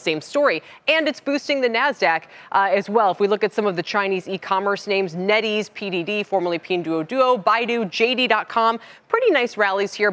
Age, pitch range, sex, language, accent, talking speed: 20-39, 180-250 Hz, female, English, American, 180 wpm